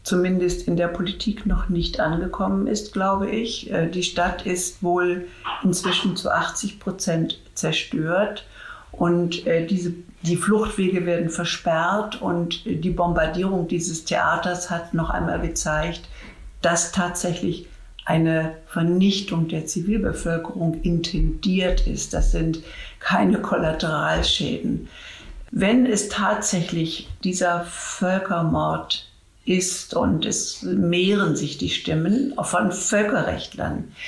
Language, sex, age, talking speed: German, female, 60-79, 105 wpm